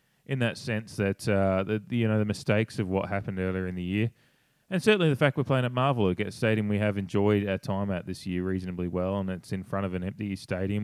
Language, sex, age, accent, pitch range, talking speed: English, male, 20-39, Australian, 95-110 Hz, 255 wpm